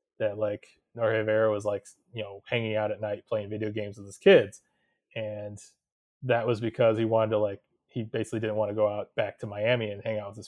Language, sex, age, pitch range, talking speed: English, male, 20-39, 105-115 Hz, 235 wpm